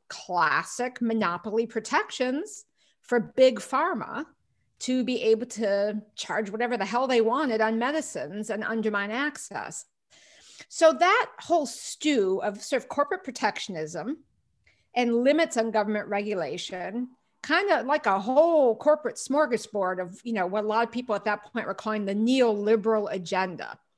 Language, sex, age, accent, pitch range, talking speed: English, female, 50-69, American, 210-260 Hz, 140 wpm